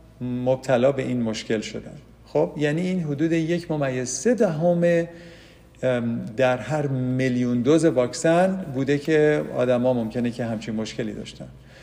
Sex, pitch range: male, 120-165 Hz